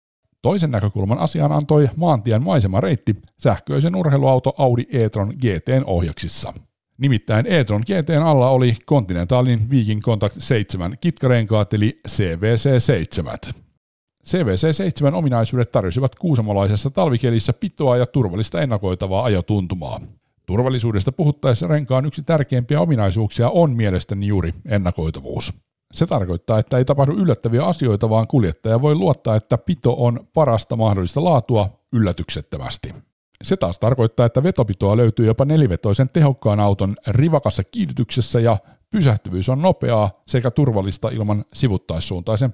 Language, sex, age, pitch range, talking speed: Finnish, male, 50-69, 105-140 Hz, 115 wpm